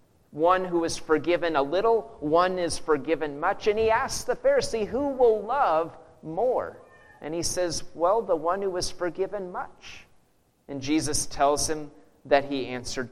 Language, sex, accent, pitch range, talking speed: English, male, American, 150-215 Hz, 165 wpm